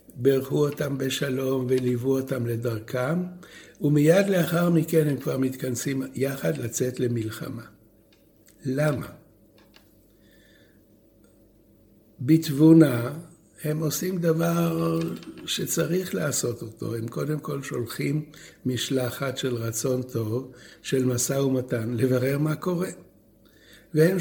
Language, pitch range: Hebrew, 115-150 Hz